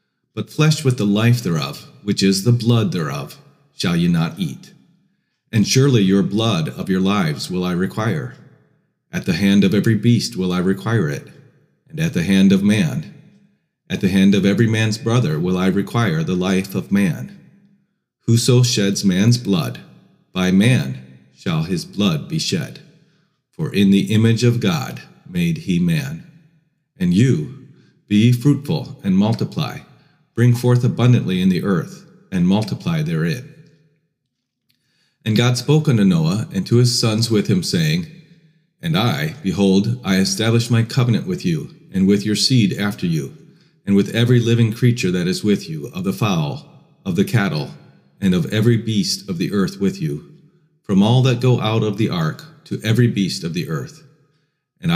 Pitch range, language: 110-165 Hz, English